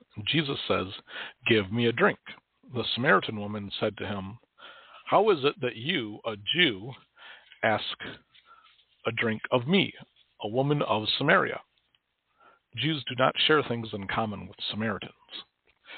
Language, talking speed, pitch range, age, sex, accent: English, 140 wpm, 110-140 Hz, 50-69, male, American